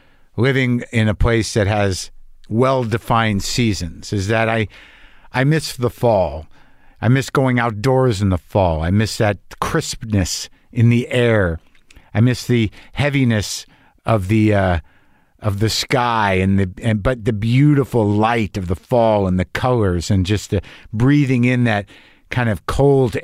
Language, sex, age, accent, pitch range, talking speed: English, male, 50-69, American, 105-150 Hz, 160 wpm